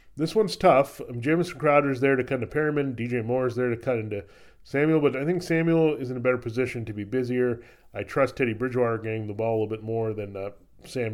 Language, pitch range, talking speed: English, 110-140 Hz, 230 wpm